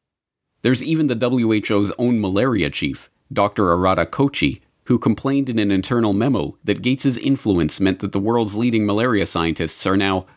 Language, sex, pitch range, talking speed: English, male, 90-120 Hz, 160 wpm